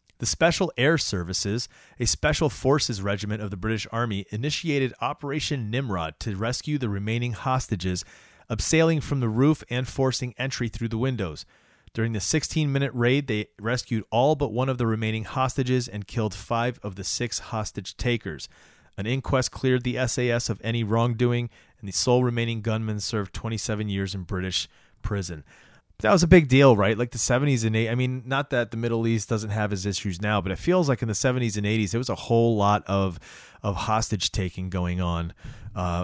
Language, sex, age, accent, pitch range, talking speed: English, male, 30-49, American, 105-130 Hz, 190 wpm